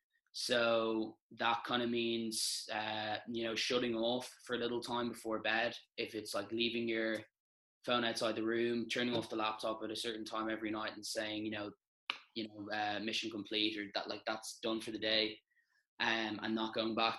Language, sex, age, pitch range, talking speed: English, male, 20-39, 105-115 Hz, 200 wpm